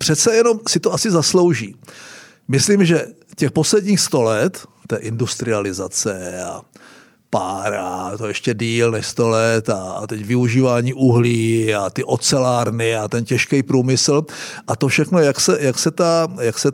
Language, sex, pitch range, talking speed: Czech, male, 120-155 Hz, 160 wpm